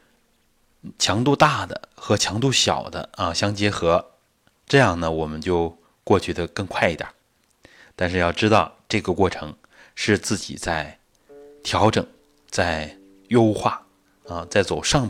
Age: 30-49